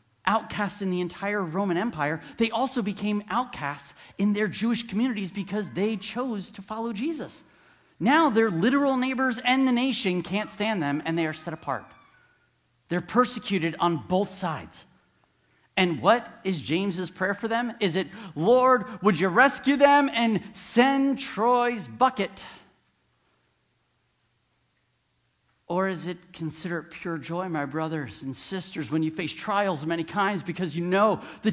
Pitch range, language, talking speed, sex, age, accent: 165-235 Hz, English, 150 wpm, male, 50-69, American